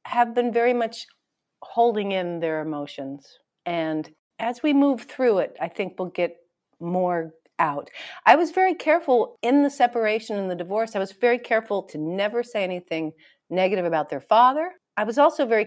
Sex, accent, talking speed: female, American, 175 wpm